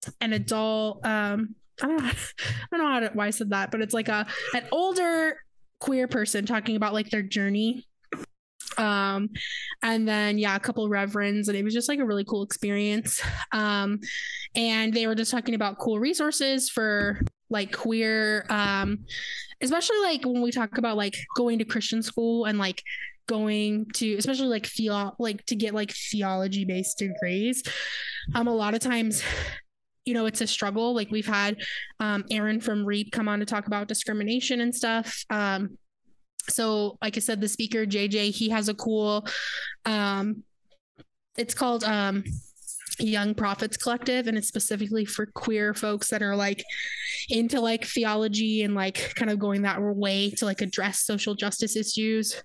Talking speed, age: 175 wpm, 20-39